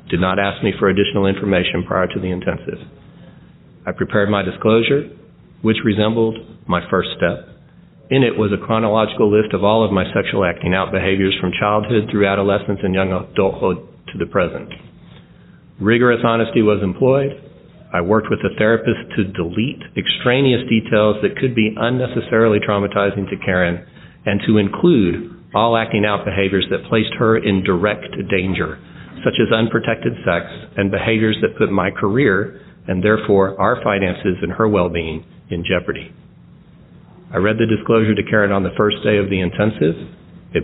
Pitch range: 95-110 Hz